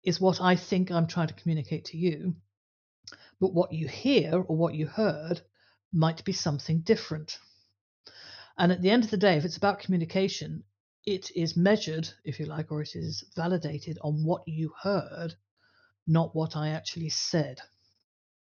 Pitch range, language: 155-190 Hz, English